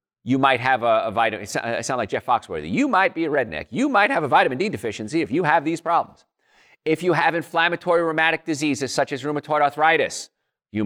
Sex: male